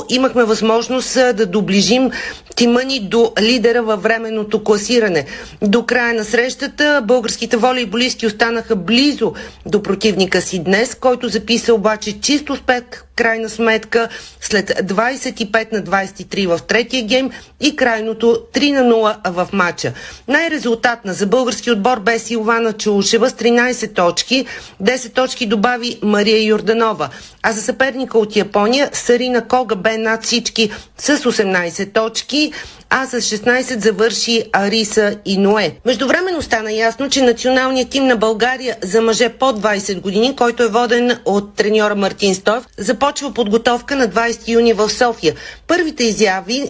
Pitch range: 215-250 Hz